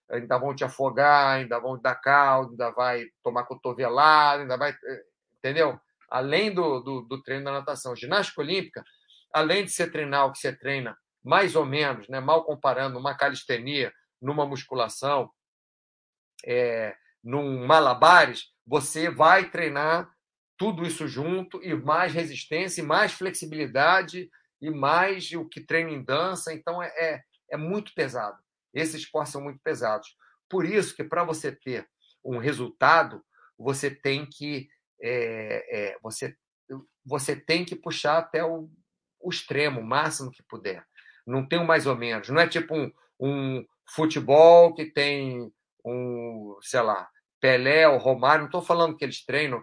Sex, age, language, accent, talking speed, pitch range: male, 50-69, Portuguese, Brazilian, 155 wpm, 135-170 Hz